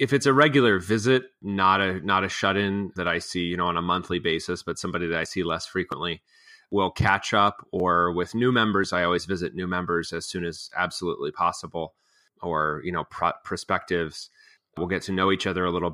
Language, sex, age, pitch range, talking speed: English, male, 30-49, 90-100 Hz, 215 wpm